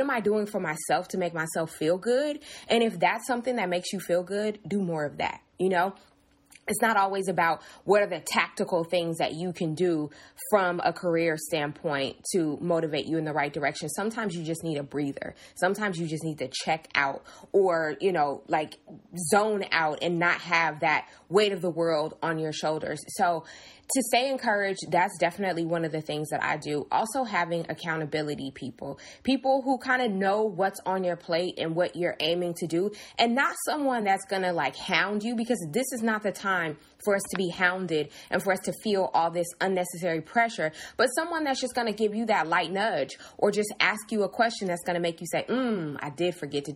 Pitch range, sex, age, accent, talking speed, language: 160-210 Hz, female, 20-39, American, 215 wpm, English